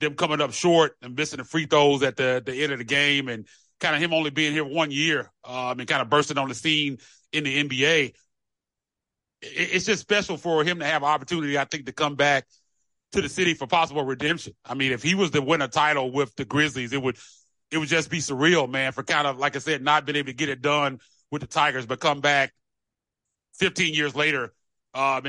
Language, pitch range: English, 130-150 Hz